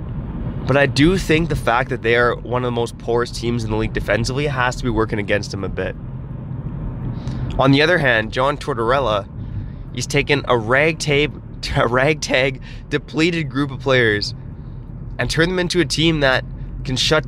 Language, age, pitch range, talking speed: English, 20-39, 125-145 Hz, 175 wpm